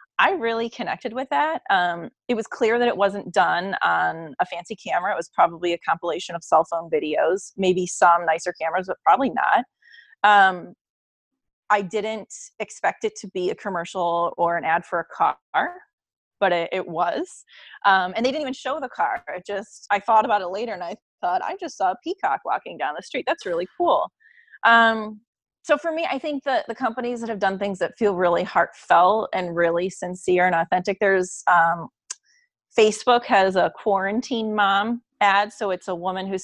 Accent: American